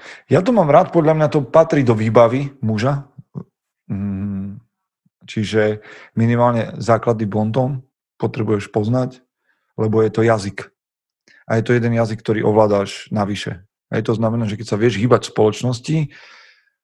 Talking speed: 145 wpm